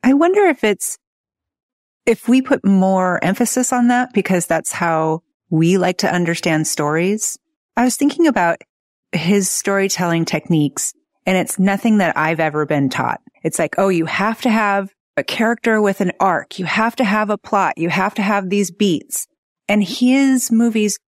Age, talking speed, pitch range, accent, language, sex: 30-49, 175 wpm, 165-215 Hz, American, English, female